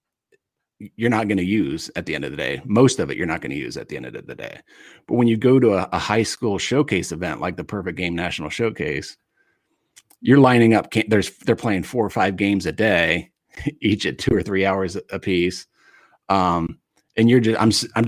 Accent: American